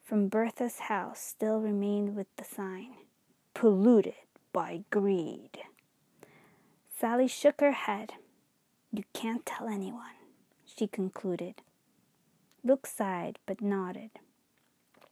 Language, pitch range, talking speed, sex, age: English, 200-245 Hz, 100 wpm, female, 20-39